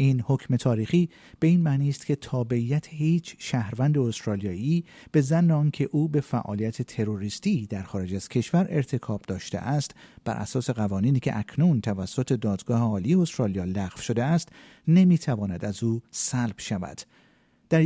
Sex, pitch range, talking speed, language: male, 105-145 Hz, 150 wpm, Persian